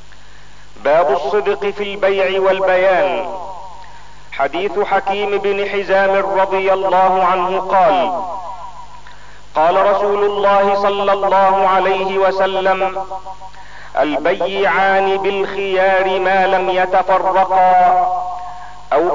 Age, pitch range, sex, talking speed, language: 50-69, 190-200 Hz, male, 80 wpm, Arabic